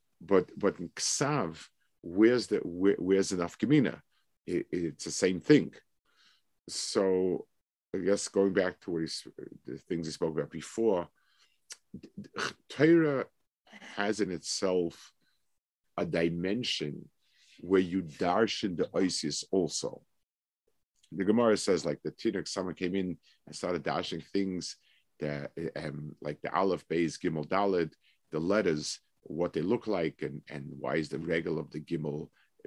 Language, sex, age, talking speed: English, male, 50-69, 140 wpm